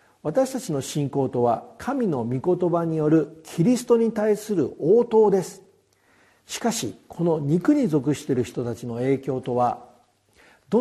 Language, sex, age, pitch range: Japanese, male, 50-69, 125-210 Hz